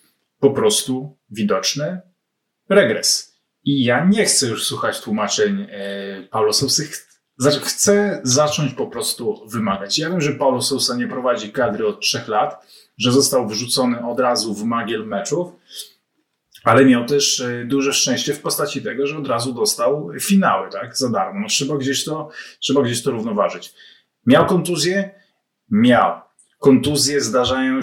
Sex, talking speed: male, 140 wpm